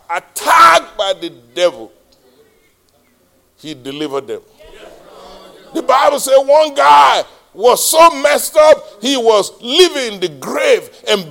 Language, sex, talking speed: English, male, 120 wpm